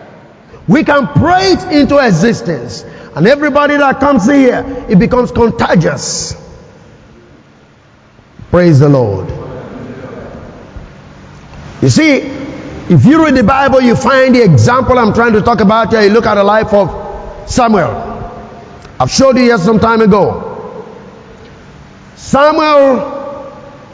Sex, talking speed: male, 125 wpm